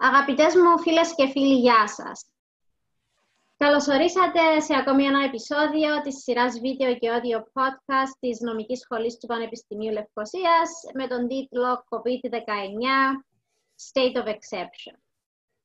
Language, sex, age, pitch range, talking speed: Greek, female, 20-39, 230-275 Hz, 120 wpm